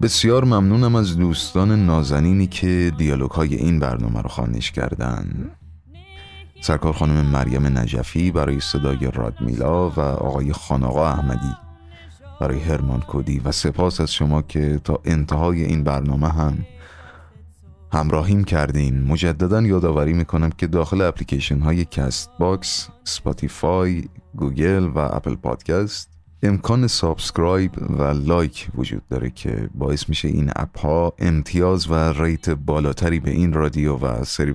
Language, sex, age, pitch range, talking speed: Persian, male, 30-49, 70-90 Hz, 125 wpm